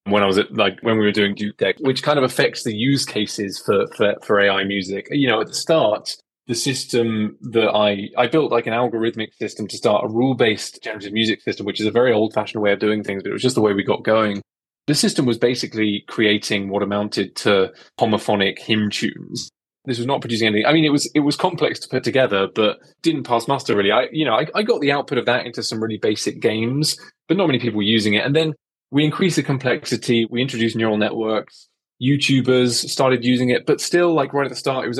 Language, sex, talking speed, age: English, male, 240 wpm, 20-39